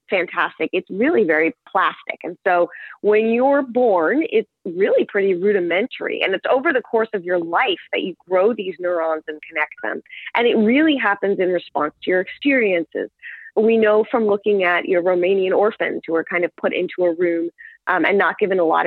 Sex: female